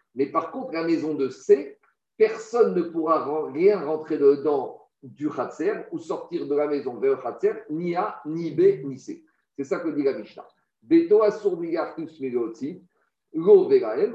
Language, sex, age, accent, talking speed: French, male, 50-69, French, 145 wpm